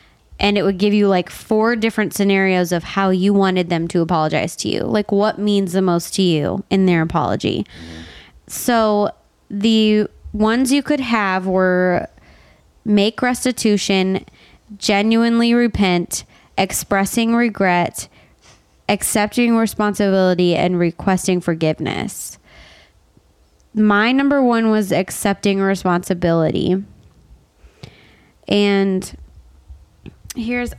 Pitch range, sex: 180-220 Hz, female